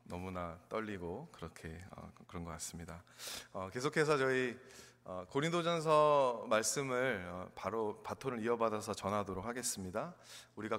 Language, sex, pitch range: Korean, male, 105-160 Hz